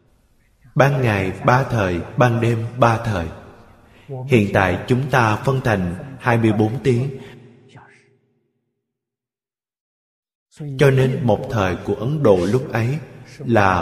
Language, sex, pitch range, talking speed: Vietnamese, male, 105-130 Hz, 115 wpm